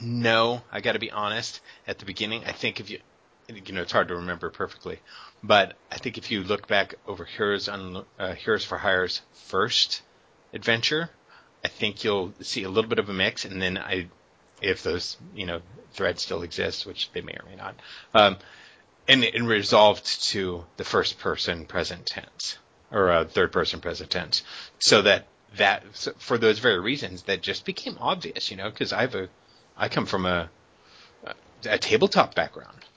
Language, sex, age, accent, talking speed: English, male, 30-49, American, 190 wpm